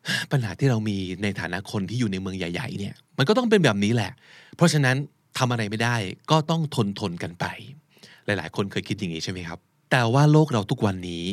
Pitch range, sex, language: 100-140 Hz, male, Thai